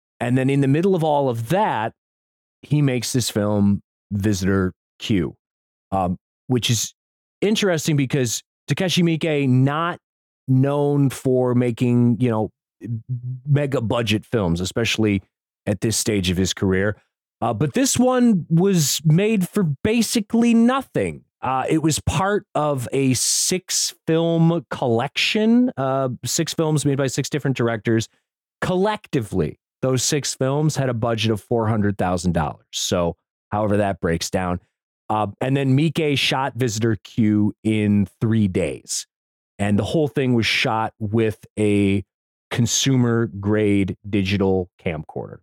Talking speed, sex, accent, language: 135 wpm, male, American, English